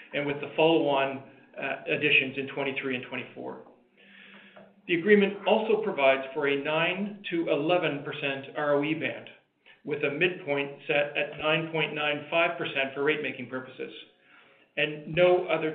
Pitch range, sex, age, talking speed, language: 140-170 Hz, male, 40-59, 120 wpm, English